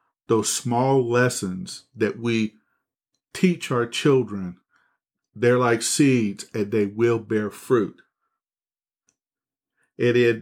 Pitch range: 110-135 Hz